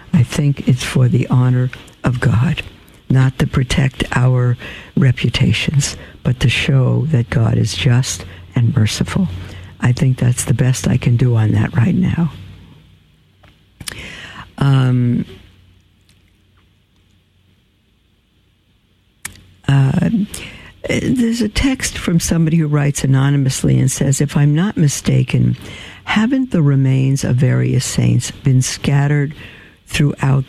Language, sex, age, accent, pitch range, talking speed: English, female, 60-79, American, 105-145 Hz, 115 wpm